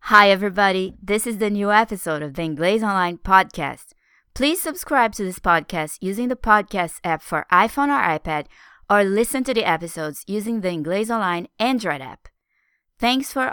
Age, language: 20-39, English